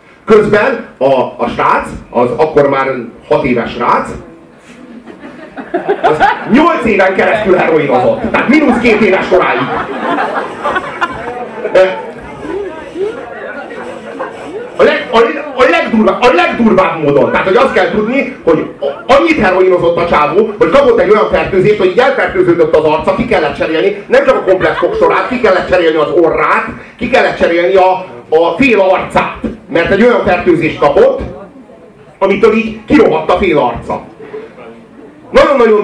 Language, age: Hungarian, 40-59